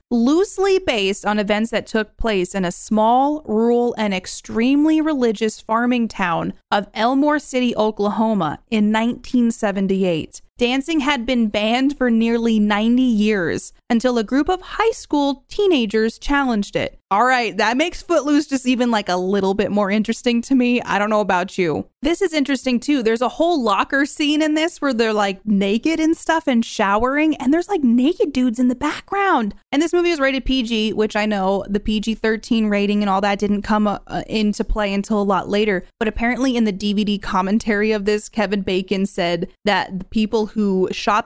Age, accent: 20-39, American